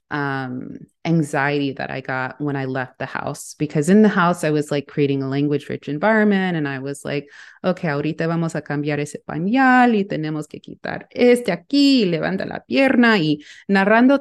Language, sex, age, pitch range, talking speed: English, female, 30-49, 150-200 Hz, 185 wpm